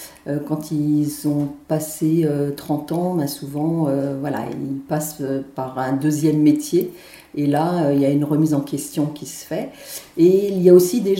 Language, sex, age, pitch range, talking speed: French, female, 40-59, 150-180 Hz, 165 wpm